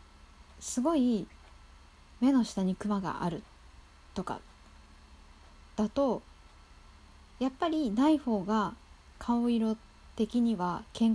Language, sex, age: Japanese, female, 20-39